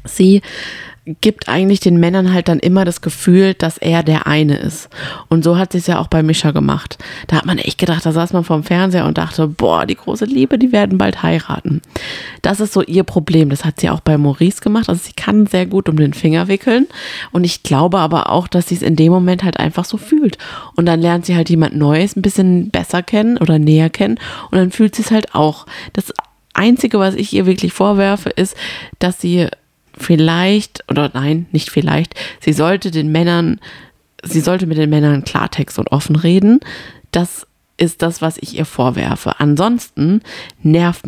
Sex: female